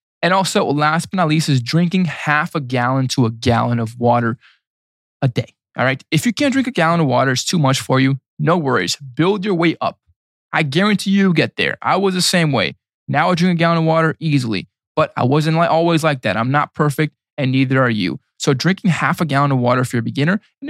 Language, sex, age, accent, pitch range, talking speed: English, male, 20-39, American, 125-165 Hz, 240 wpm